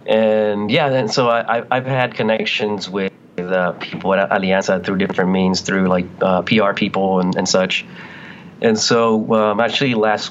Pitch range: 95-110 Hz